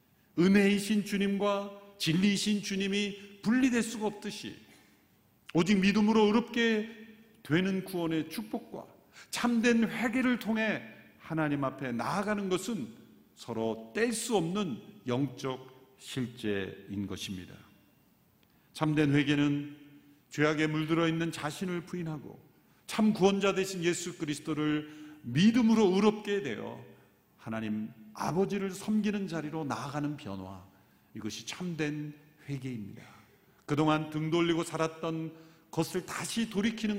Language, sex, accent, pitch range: Korean, male, native, 135-200 Hz